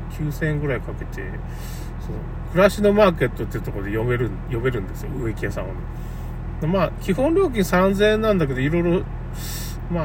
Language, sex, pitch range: Japanese, male, 120-180 Hz